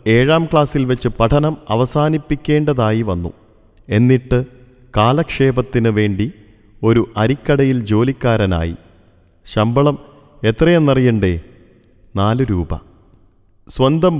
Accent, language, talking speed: native, Malayalam, 70 wpm